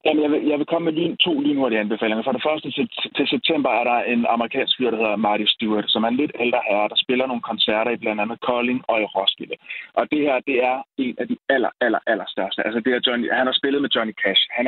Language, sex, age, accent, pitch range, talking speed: Danish, male, 30-49, native, 115-155 Hz, 280 wpm